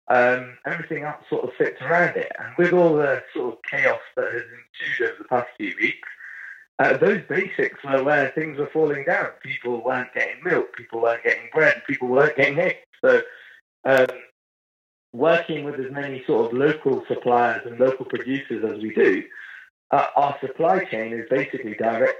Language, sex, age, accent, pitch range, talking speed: English, male, 30-49, British, 115-160 Hz, 180 wpm